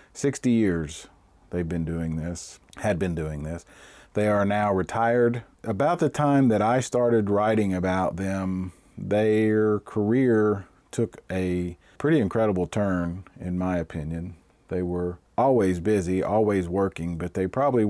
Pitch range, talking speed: 90-115 Hz, 140 wpm